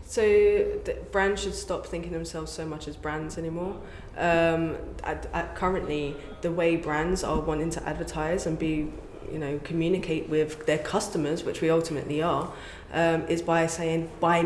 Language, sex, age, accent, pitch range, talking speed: Romanian, female, 20-39, British, 155-180 Hz, 160 wpm